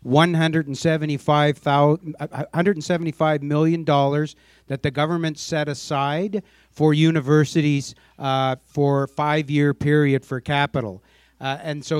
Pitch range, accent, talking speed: 140-160 Hz, American, 100 wpm